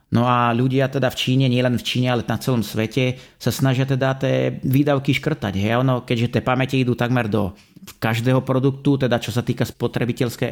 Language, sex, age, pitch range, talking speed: Slovak, male, 30-49, 115-135 Hz, 200 wpm